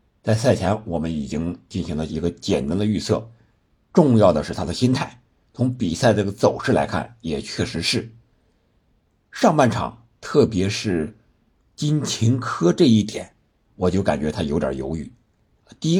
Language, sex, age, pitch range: Chinese, male, 60-79, 90-115 Hz